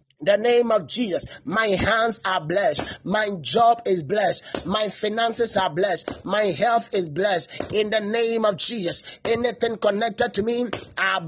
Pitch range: 190-235 Hz